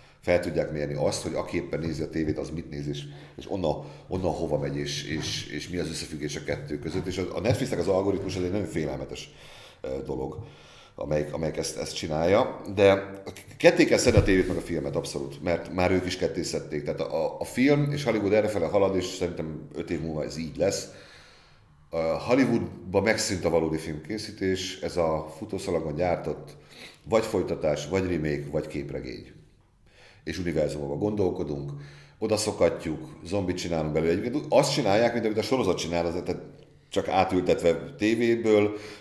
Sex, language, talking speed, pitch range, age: male, Hungarian, 165 wpm, 80-110 Hz, 40-59